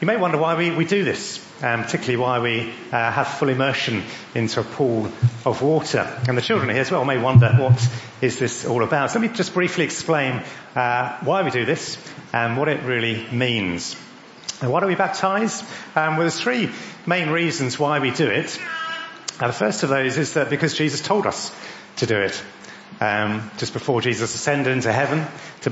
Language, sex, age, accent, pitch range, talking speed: English, male, 40-59, British, 115-165 Hz, 205 wpm